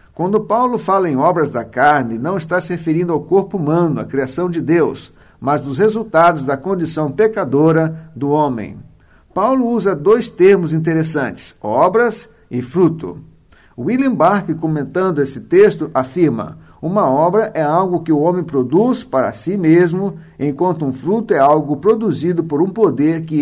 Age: 50-69